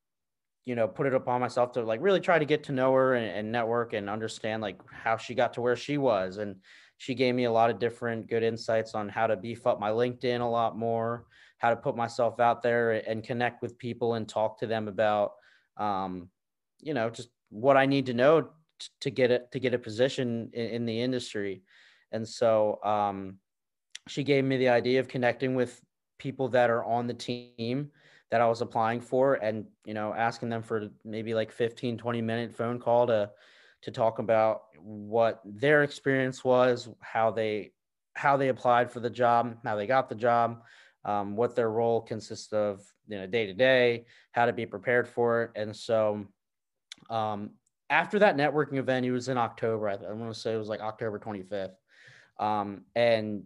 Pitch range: 110-125 Hz